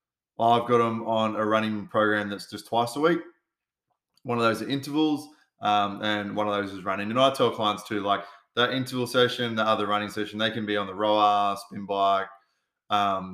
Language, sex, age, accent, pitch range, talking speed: English, male, 20-39, Australian, 105-120 Hz, 205 wpm